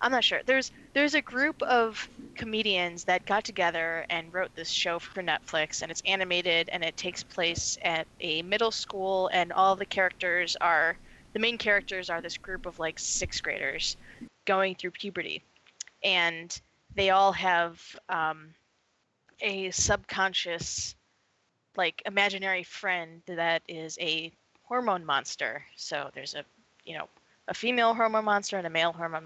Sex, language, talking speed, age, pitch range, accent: female, English, 155 wpm, 20-39, 165-200 Hz, American